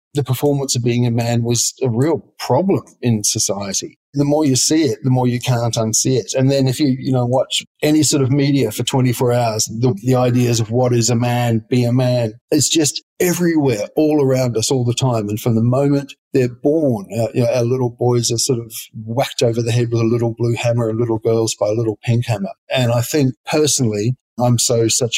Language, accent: English, Australian